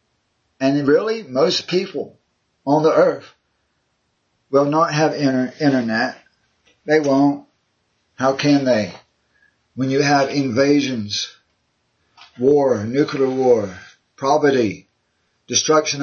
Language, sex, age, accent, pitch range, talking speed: English, male, 50-69, American, 125-150 Hz, 95 wpm